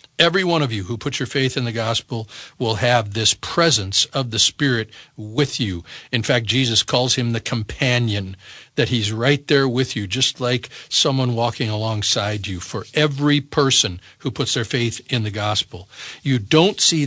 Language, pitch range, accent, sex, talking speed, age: English, 110-140 Hz, American, male, 185 wpm, 50-69